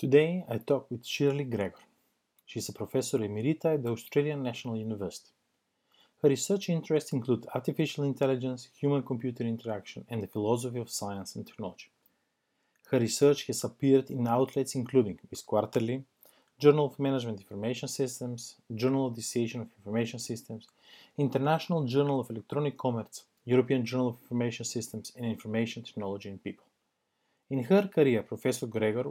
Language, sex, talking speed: English, male, 150 wpm